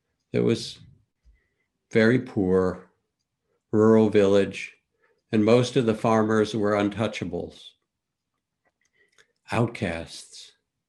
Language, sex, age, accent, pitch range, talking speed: English, male, 60-79, American, 95-115 Hz, 75 wpm